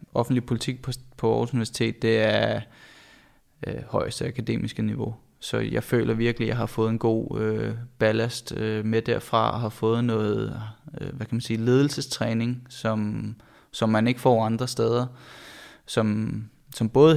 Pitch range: 110-125 Hz